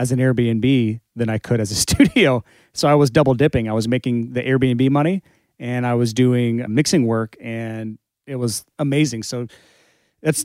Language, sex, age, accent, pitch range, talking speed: English, male, 30-49, American, 120-150 Hz, 185 wpm